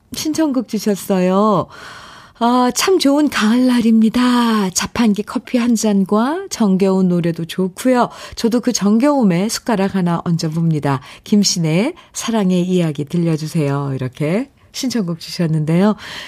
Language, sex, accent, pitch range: Korean, female, native, 155-220 Hz